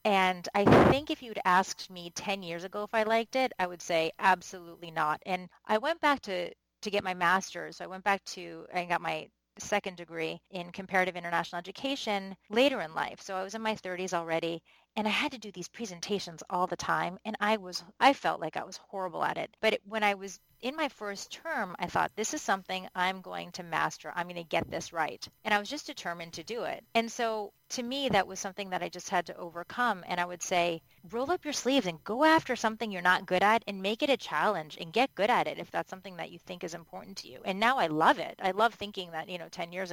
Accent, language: American, English